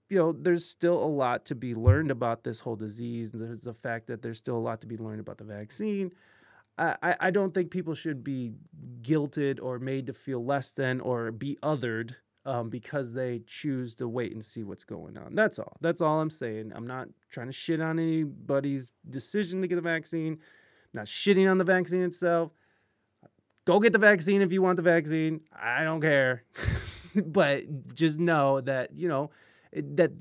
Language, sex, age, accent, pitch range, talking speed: English, male, 30-49, American, 115-165 Hz, 195 wpm